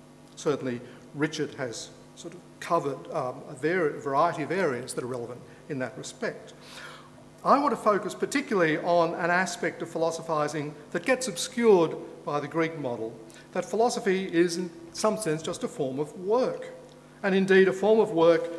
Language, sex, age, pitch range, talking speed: English, male, 50-69, 150-190 Hz, 170 wpm